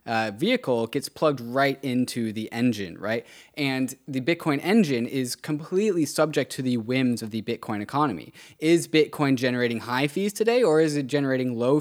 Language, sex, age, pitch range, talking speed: English, male, 20-39, 120-160 Hz, 175 wpm